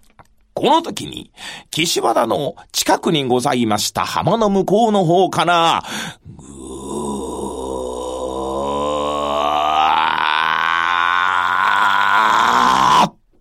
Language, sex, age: Japanese, male, 40-59